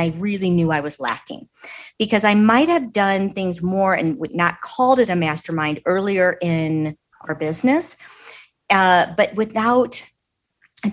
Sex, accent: female, American